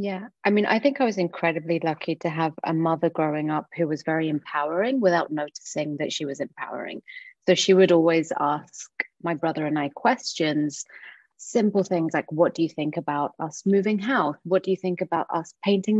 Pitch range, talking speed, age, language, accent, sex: 155-195 Hz, 200 wpm, 30-49, English, British, female